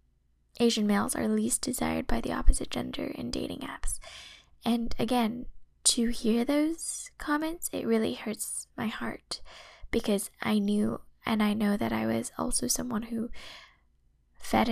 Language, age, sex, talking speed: English, 10-29, female, 145 wpm